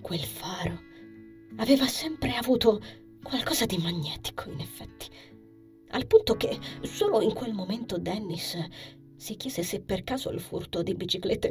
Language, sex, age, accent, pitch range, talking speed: Italian, female, 20-39, native, 175-250 Hz, 140 wpm